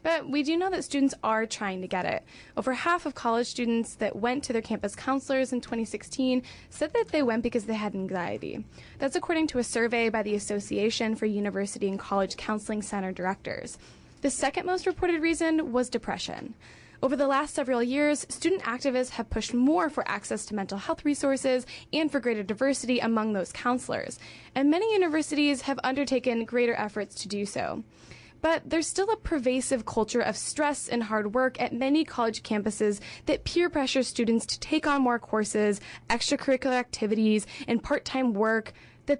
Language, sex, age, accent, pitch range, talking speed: English, female, 10-29, American, 220-290 Hz, 180 wpm